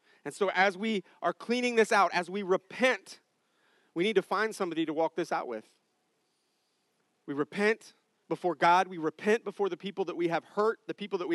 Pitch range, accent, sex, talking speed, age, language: 125-205 Hz, American, male, 200 wpm, 30-49, English